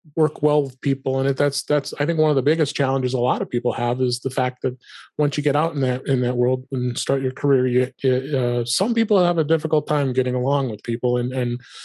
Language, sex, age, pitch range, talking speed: English, male, 30-49, 130-145 Hz, 260 wpm